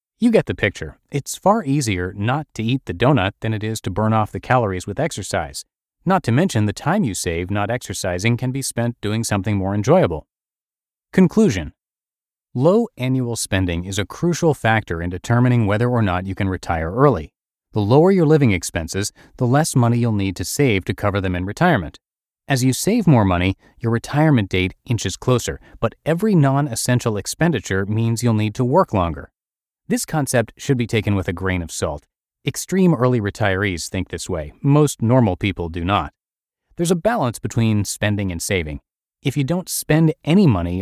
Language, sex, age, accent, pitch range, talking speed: English, male, 30-49, American, 95-135 Hz, 185 wpm